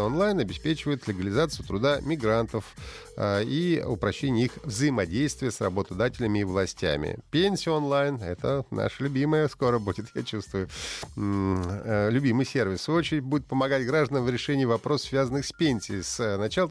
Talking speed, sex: 135 wpm, male